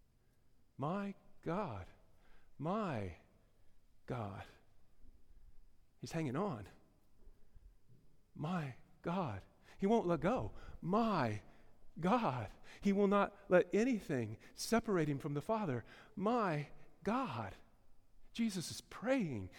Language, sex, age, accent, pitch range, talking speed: English, male, 40-59, American, 135-210 Hz, 90 wpm